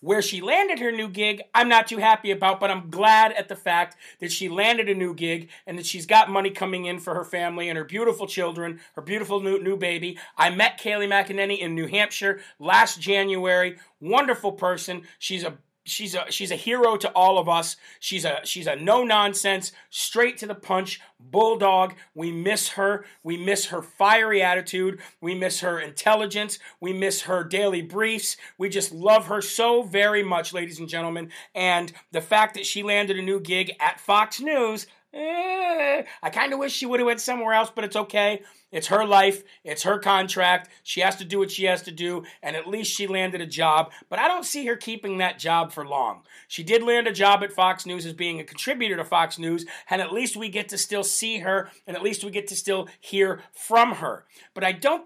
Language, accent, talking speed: English, American, 215 wpm